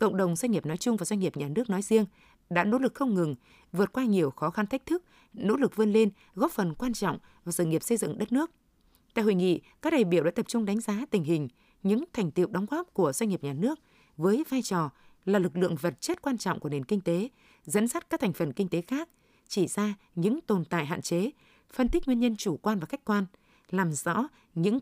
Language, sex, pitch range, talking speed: Vietnamese, female, 175-240 Hz, 250 wpm